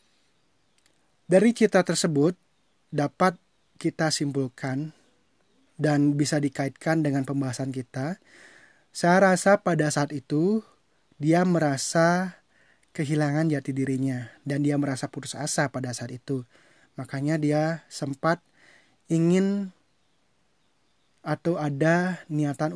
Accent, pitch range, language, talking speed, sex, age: native, 140-175 Hz, Indonesian, 100 wpm, male, 20-39